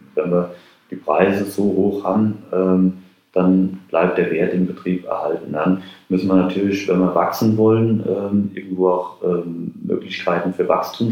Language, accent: German, German